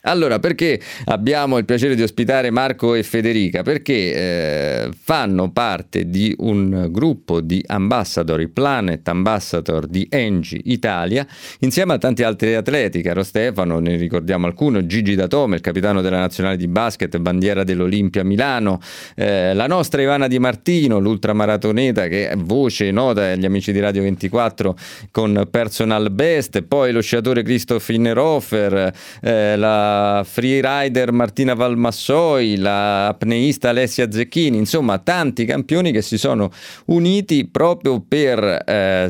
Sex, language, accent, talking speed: male, Italian, native, 135 wpm